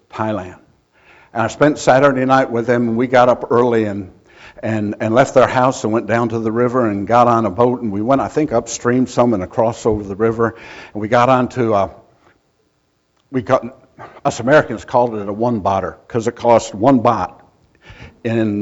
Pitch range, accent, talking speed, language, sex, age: 110-130 Hz, American, 200 wpm, English, male, 60-79